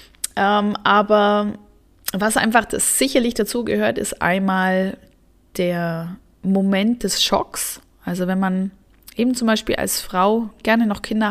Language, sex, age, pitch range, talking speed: German, female, 20-39, 185-225 Hz, 125 wpm